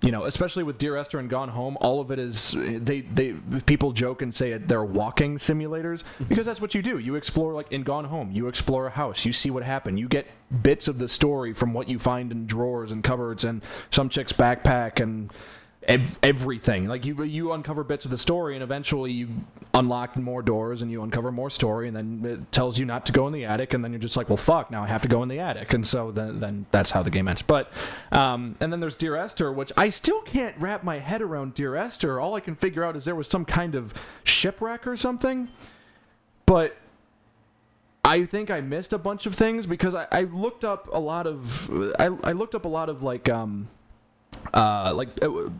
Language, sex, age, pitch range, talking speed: English, male, 20-39, 120-160 Hz, 230 wpm